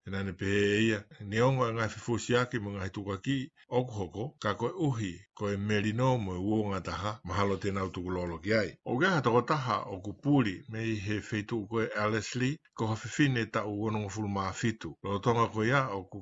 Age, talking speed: 50-69, 160 wpm